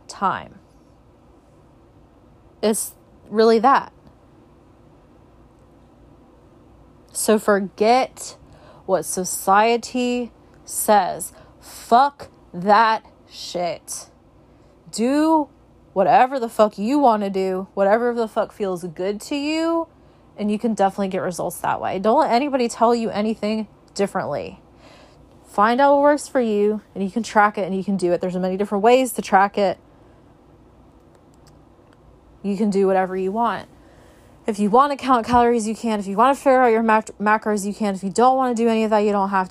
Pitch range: 195-240 Hz